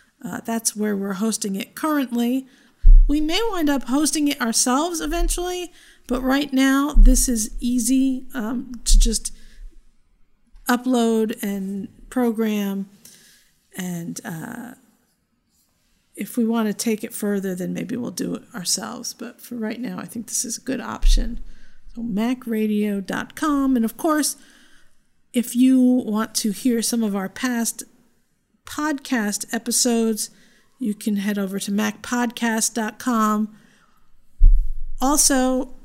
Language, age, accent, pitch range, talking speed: English, 50-69, American, 210-260 Hz, 125 wpm